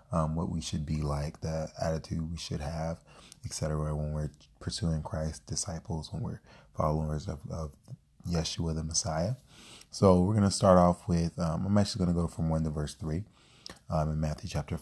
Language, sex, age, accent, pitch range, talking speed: English, male, 30-49, American, 80-95 Hz, 195 wpm